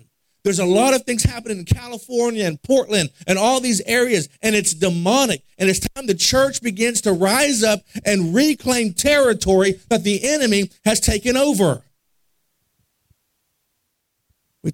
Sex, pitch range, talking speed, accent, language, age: male, 165-225 Hz, 145 wpm, American, English, 50-69